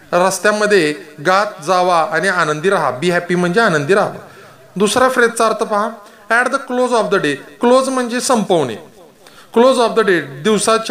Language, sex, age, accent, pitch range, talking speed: Marathi, male, 30-49, native, 175-220 Hz, 140 wpm